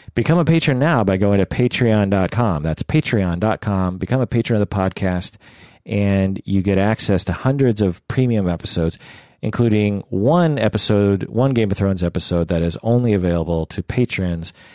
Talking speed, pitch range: 160 wpm, 90-115 Hz